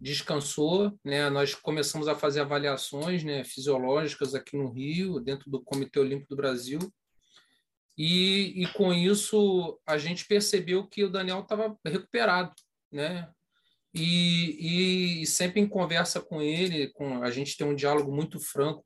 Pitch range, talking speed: 145-185 Hz, 150 wpm